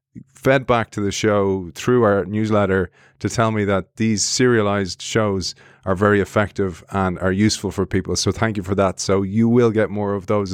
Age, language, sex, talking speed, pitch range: 30-49, English, male, 200 wpm, 100-120 Hz